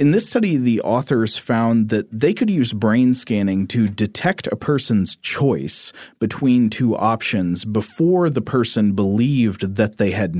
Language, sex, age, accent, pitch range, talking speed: English, male, 40-59, American, 100-125 Hz, 155 wpm